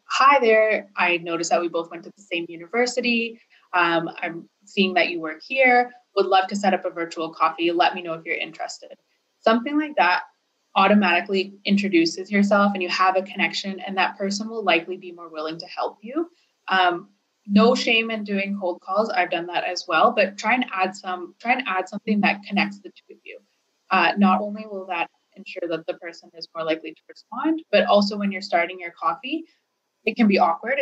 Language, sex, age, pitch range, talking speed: English, female, 20-39, 180-225 Hz, 210 wpm